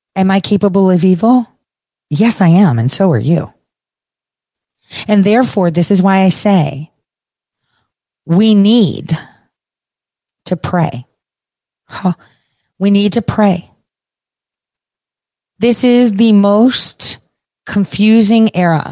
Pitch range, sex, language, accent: 175-250 Hz, female, English, American